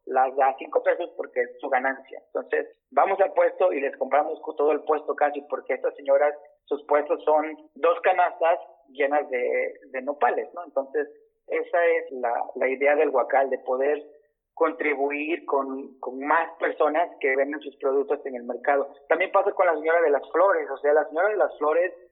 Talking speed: 185 wpm